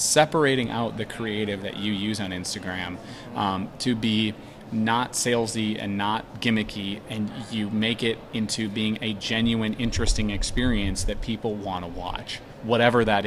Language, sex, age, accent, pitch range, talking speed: English, male, 30-49, American, 105-130 Hz, 155 wpm